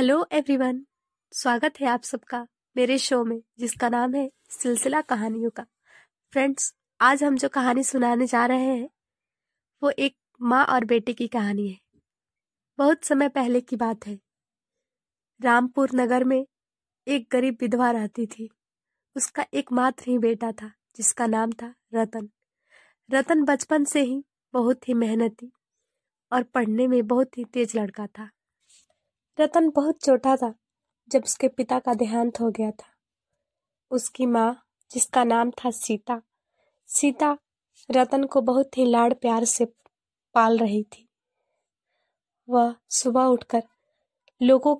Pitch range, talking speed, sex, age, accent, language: 230-265 Hz, 140 wpm, female, 20-39, native, Hindi